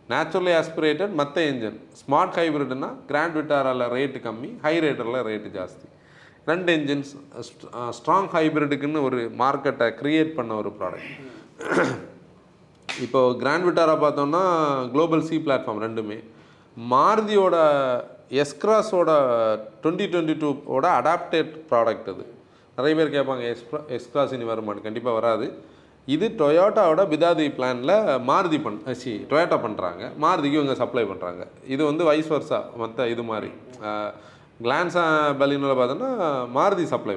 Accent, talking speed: native, 120 wpm